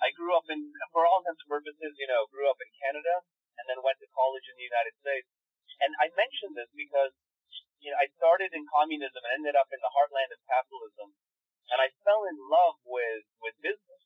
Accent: American